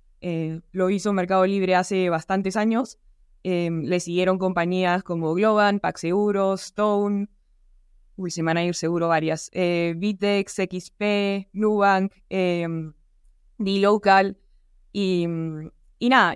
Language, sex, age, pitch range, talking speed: Spanish, female, 20-39, 175-200 Hz, 115 wpm